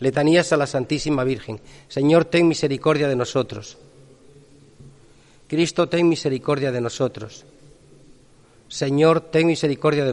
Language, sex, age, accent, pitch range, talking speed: Spanish, male, 40-59, Spanish, 130-155 Hz, 115 wpm